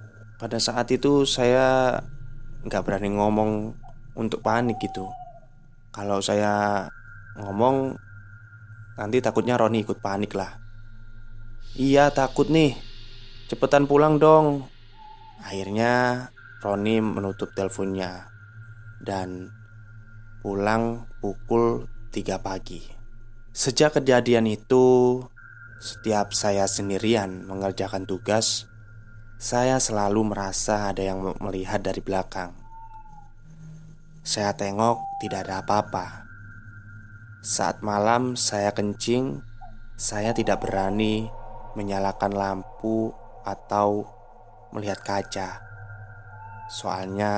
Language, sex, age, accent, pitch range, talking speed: Indonesian, male, 20-39, native, 100-120 Hz, 85 wpm